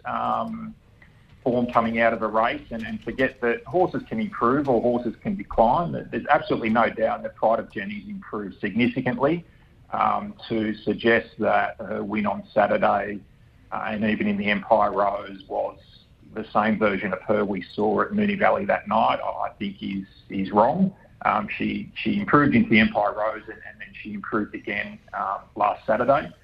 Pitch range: 110-135 Hz